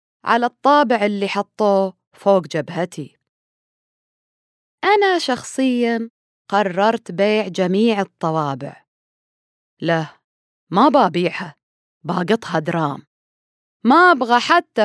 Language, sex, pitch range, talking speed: Arabic, female, 180-265 Hz, 80 wpm